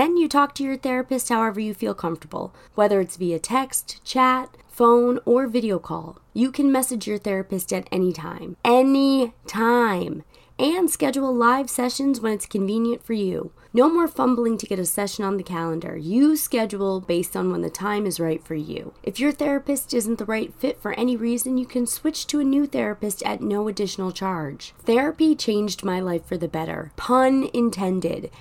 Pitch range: 195-255 Hz